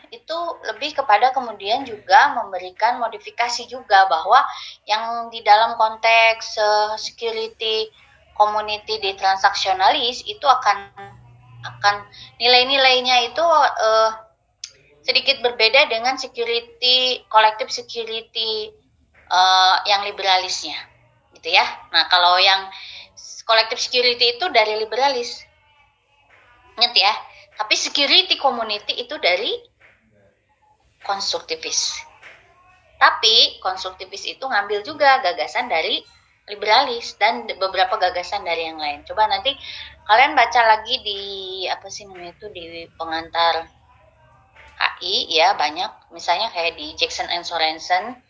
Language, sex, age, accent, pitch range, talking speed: Indonesian, female, 20-39, native, 190-275 Hz, 105 wpm